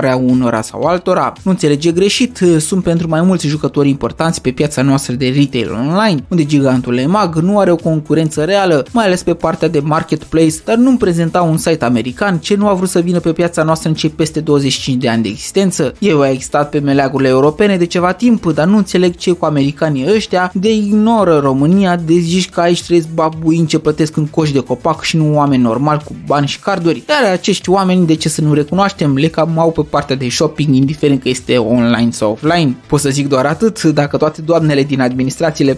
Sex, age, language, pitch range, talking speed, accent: male, 20-39, Romanian, 140-180 Hz, 210 wpm, native